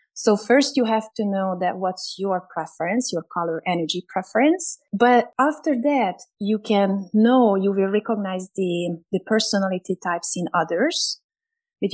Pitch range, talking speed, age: 185-245 Hz, 150 wpm, 30-49